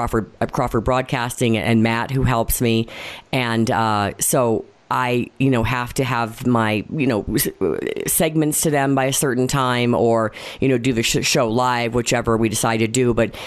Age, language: 40-59, English